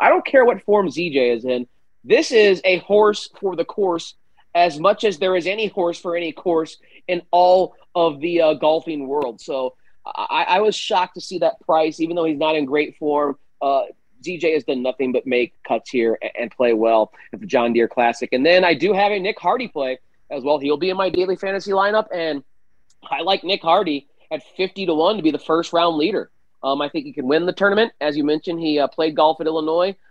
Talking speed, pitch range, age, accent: 225 wpm, 145-185 Hz, 30-49, American